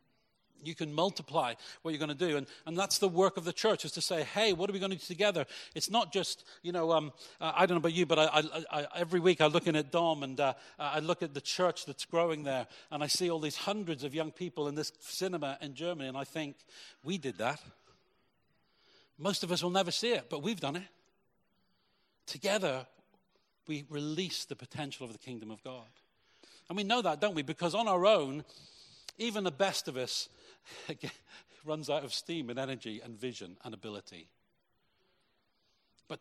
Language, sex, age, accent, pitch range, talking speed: English, male, 40-59, British, 135-175 Hz, 210 wpm